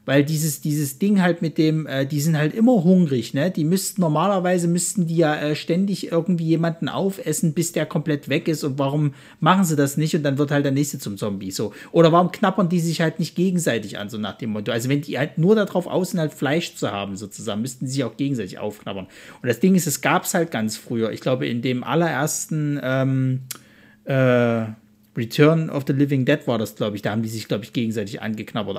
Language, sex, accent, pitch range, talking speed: German, male, German, 135-170 Hz, 230 wpm